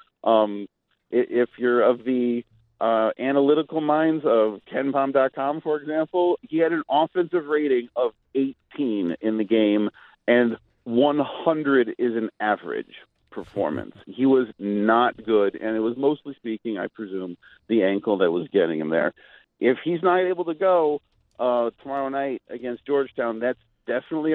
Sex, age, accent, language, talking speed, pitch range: male, 40-59, American, English, 145 wpm, 120-170 Hz